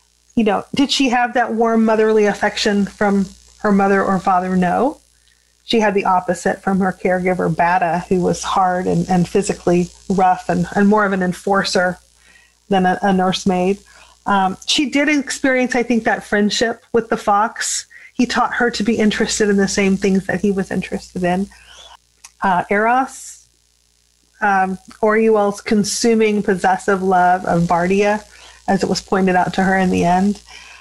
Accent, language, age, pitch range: American, English, 30-49, 190-225 Hz